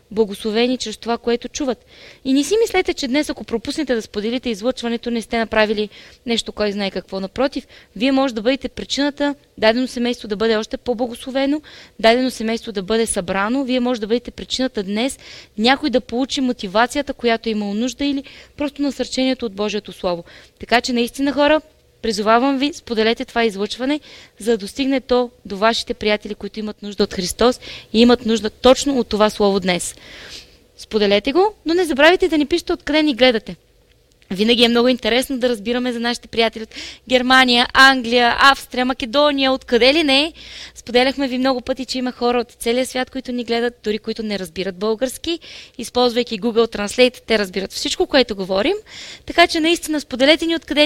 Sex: female